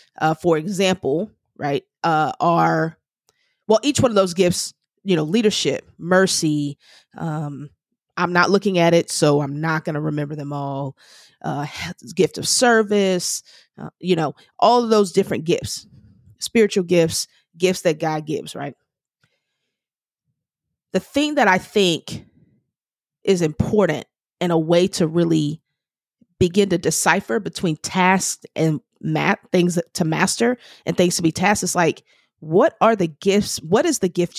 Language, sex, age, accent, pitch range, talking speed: English, female, 30-49, American, 160-205 Hz, 150 wpm